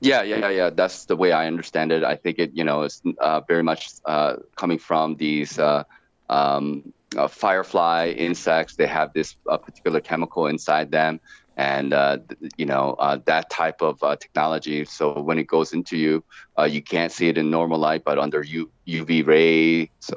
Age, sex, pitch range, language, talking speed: 30-49, male, 75-80 Hz, English, 190 wpm